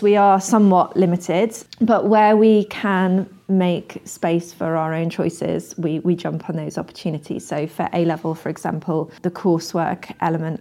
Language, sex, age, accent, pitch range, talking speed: English, female, 30-49, British, 160-185 Hz, 160 wpm